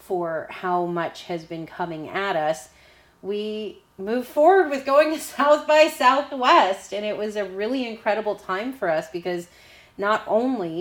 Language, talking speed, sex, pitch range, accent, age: English, 160 wpm, female, 180-220 Hz, American, 30-49